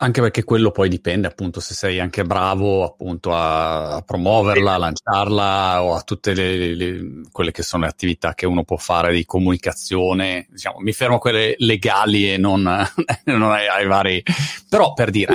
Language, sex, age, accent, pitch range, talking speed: Italian, male, 30-49, native, 90-120 Hz, 170 wpm